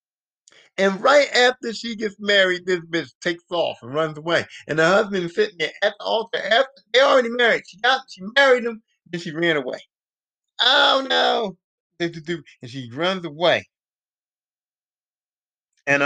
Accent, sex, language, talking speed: American, male, English, 155 wpm